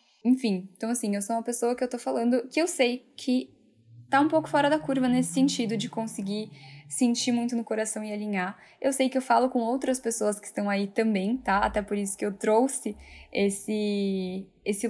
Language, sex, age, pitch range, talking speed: Portuguese, female, 10-29, 210-255 Hz, 210 wpm